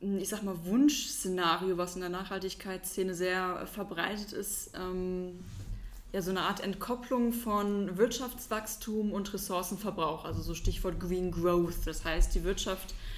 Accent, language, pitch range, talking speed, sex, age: German, German, 180-210 Hz, 135 wpm, female, 20-39